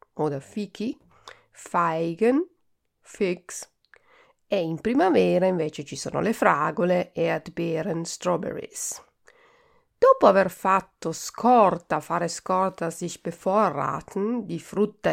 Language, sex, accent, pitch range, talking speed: Italian, female, native, 170-235 Hz, 105 wpm